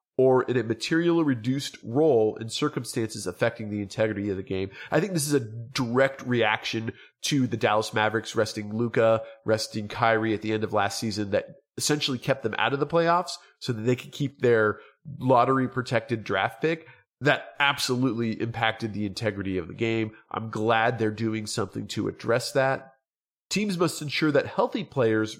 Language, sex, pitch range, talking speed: English, male, 110-150 Hz, 175 wpm